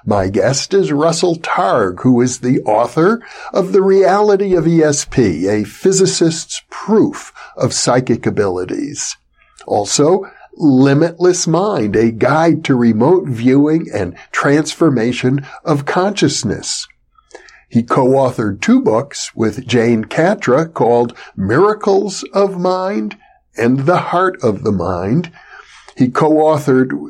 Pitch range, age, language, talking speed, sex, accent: 125-180 Hz, 60-79, English, 115 wpm, male, American